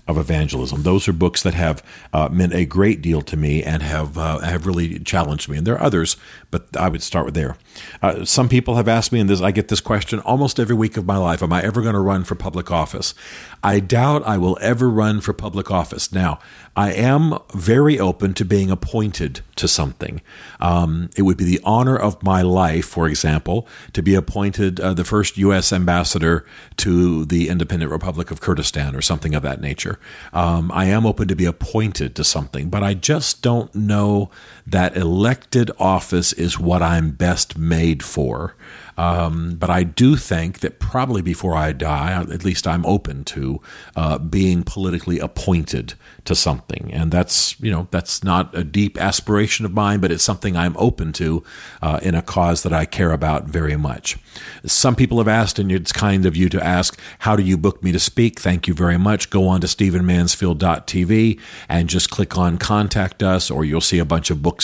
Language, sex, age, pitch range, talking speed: English, male, 50-69, 85-100 Hz, 200 wpm